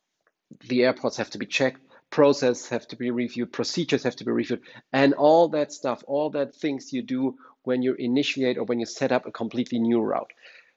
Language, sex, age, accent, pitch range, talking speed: English, male, 40-59, German, 125-155 Hz, 205 wpm